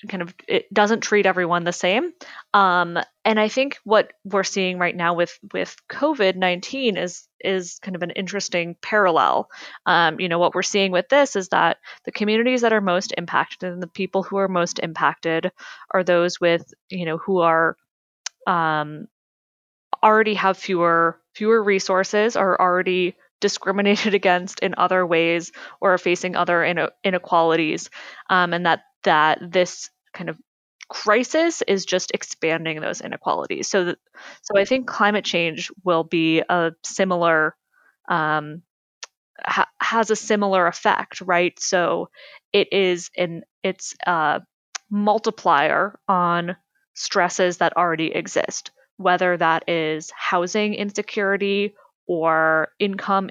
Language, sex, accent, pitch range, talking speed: English, female, American, 175-205 Hz, 140 wpm